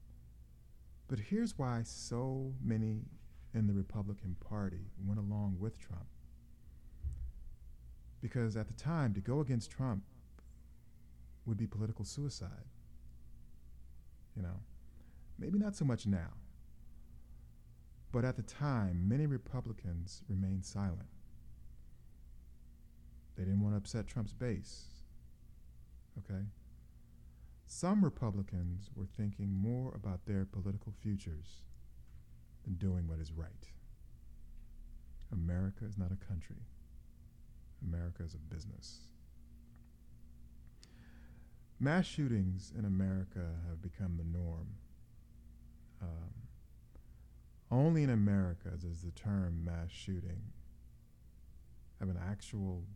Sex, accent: male, American